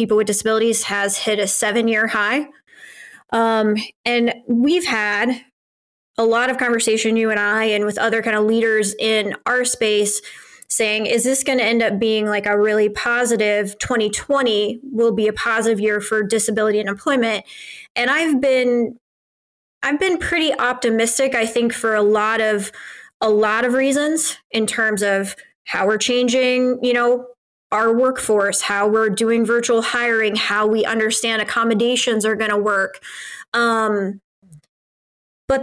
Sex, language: female, English